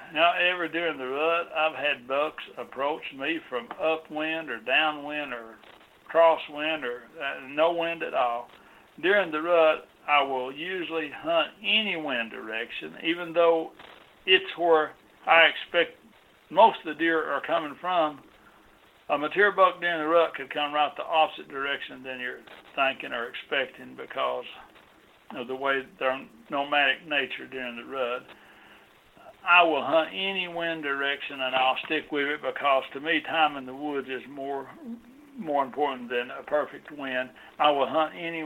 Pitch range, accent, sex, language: 130-160 Hz, American, male, English